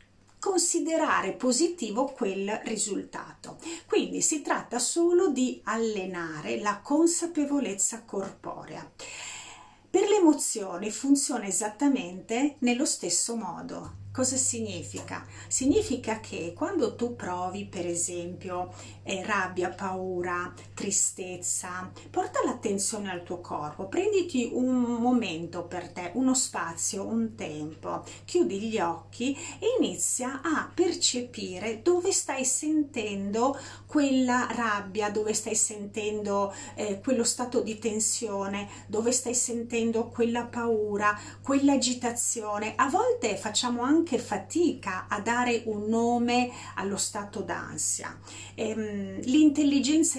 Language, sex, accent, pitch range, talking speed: Italian, female, native, 190-260 Hz, 105 wpm